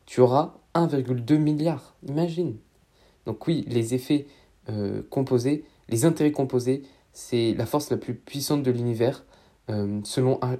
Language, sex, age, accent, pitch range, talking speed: French, male, 20-39, French, 115-150 Hz, 135 wpm